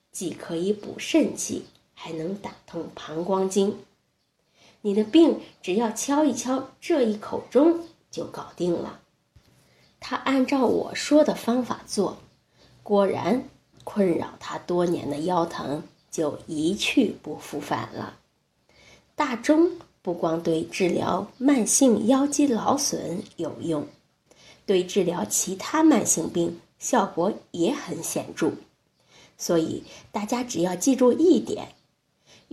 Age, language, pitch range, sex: 20-39, Chinese, 175-265 Hz, female